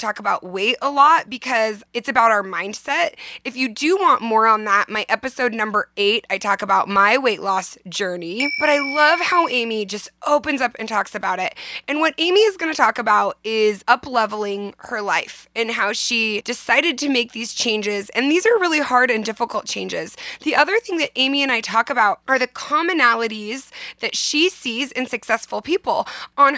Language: English